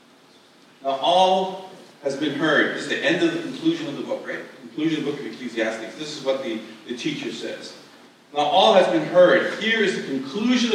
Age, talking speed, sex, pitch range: 40-59, 220 wpm, male, 135-200 Hz